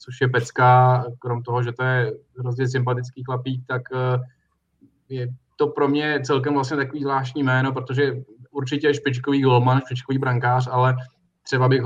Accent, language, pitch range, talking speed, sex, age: native, Czech, 120-130 Hz, 155 wpm, male, 20-39